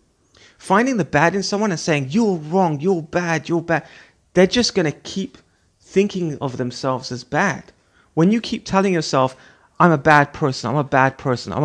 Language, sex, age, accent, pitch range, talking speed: English, male, 30-49, British, 140-195 Hz, 190 wpm